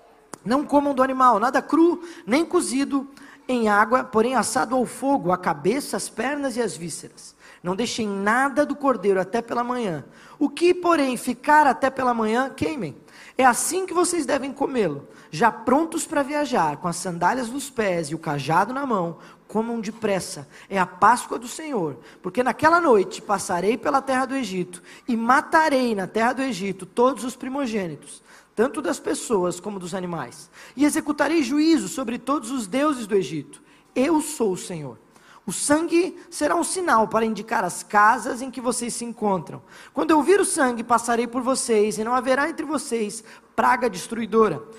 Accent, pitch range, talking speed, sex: Brazilian, 210-280 Hz, 175 wpm, male